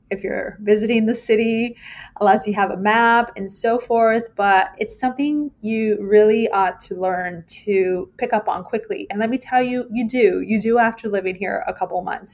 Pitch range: 195-230 Hz